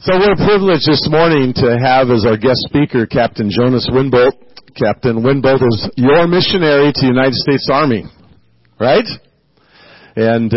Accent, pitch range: American, 115-145 Hz